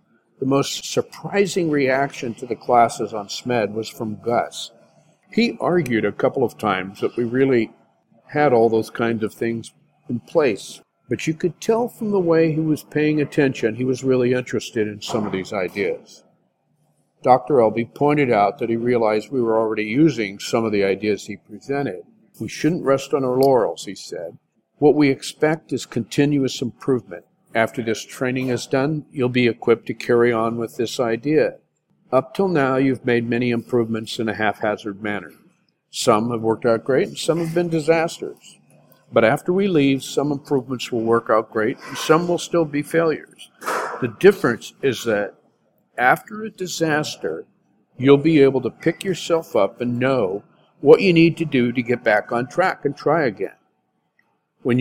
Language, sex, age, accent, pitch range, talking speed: English, male, 50-69, American, 115-155 Hz, 175 wpm